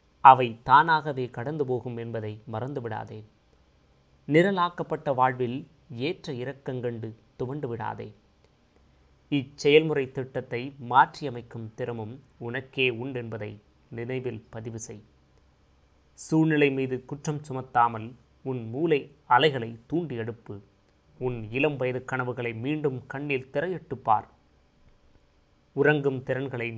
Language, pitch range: Tamil, 115-135 Hz